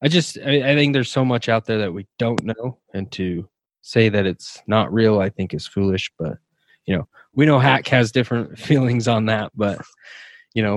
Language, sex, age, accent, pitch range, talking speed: English, male, 20-39, American, 105-135 Hz, 210 wpm